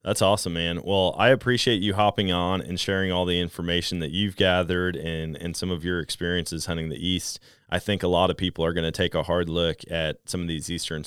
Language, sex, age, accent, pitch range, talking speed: English, male, 20-39, American, 85-105 Hz, 240 wpm